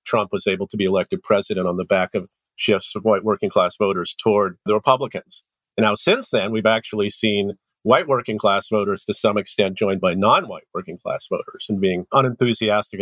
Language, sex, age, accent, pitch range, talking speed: English, male, 50-69, American, 110-135 Hz, 200 wpm